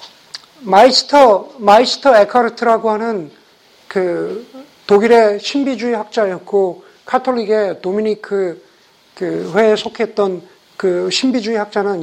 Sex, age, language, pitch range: male, 50-69, Korean, 205-265 Hz